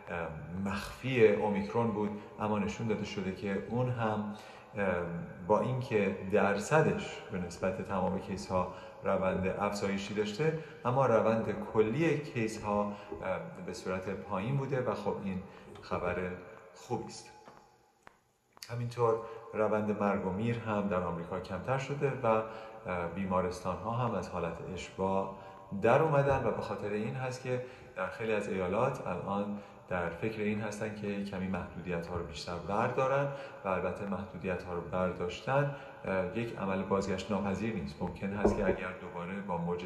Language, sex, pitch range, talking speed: Persian, male, 95-125 Hz, 145 wpm